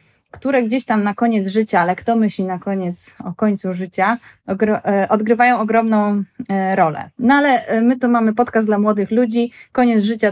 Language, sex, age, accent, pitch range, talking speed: Polish, female, 20-39, native, 200-240 Hz, 165 wpm